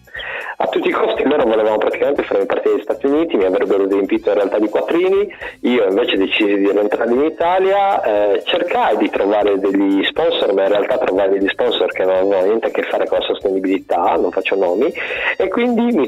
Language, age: Italian, 30-49